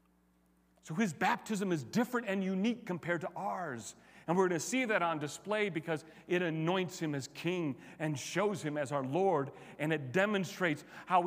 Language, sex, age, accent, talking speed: English, male, 40-59, American, 180 wpm